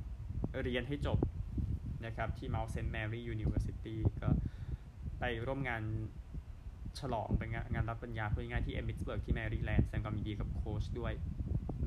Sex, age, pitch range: male, 20-39, 95-115 Hz